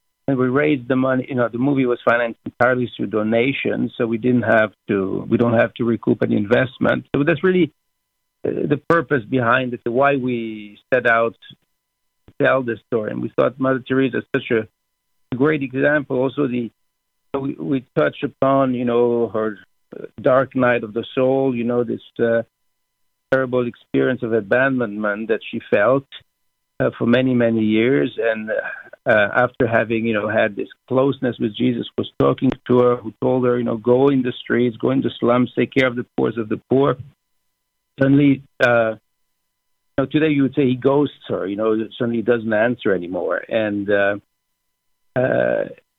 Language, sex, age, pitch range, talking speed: English, male, 50-69, 115-135 Hz, 180 wpm